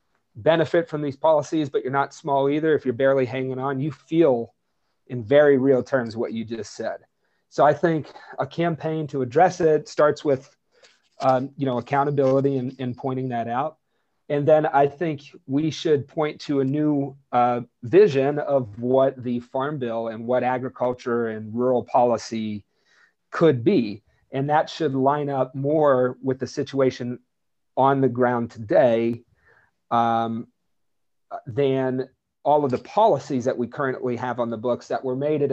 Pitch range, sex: 115-140 Hz, male